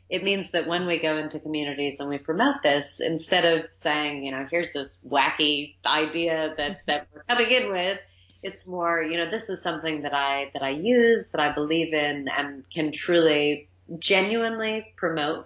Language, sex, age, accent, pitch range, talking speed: English, female, 30-49, American, 140-175 Hz, 185 wpm